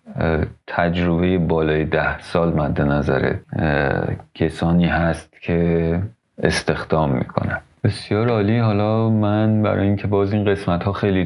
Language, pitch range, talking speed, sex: Persian, 80-95 Hz, 115 wpm, male